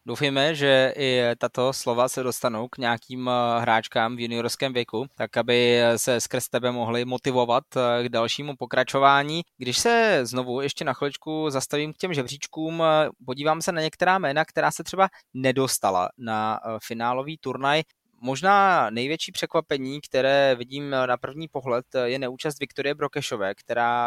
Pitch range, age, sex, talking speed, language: 120-145 Hz, 20-39, male, 145 wpm, Czech